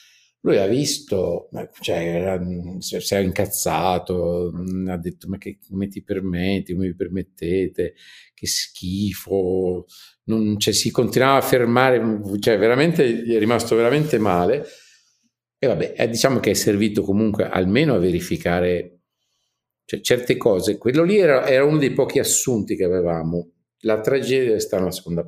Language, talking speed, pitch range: Italian, 145 wpm, 95-125 Hz